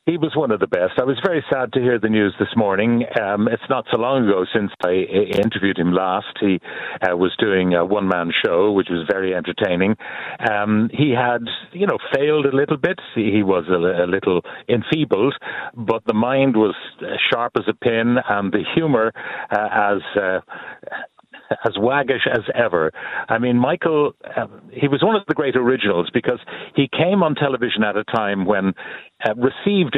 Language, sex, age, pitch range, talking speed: English, male, 60-79, 105-135 Hz, 185 wpm